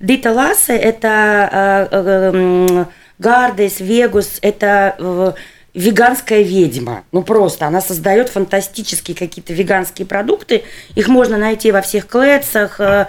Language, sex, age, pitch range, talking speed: Russian, female, 20-39, 195-240 Hz, 110 wpm